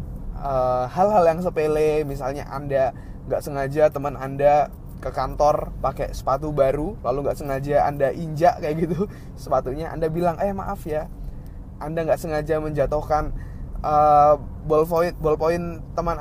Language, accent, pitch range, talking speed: Indonesian, native, 130-160 Hz, 135 wpm